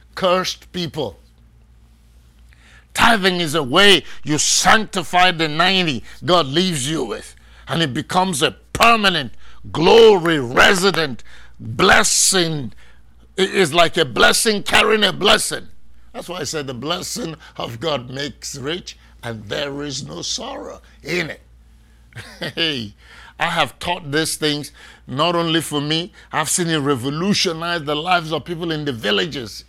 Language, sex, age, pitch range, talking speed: English, male, 60-79, 145-190 Hz, 135 wpm